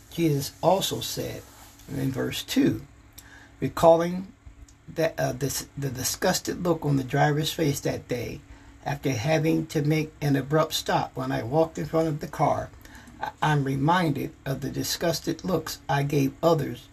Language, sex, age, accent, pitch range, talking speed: English, male, 60-79, American, 115-155 Hz, 145 wpm